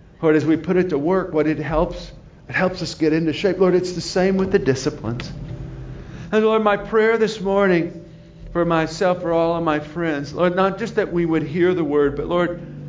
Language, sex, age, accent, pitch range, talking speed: English, male, 50-69, American, 140-180 Hz, 220 wpm